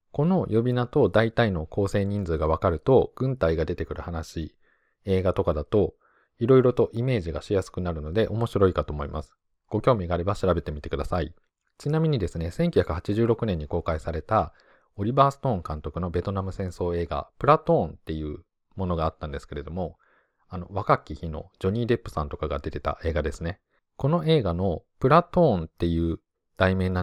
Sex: male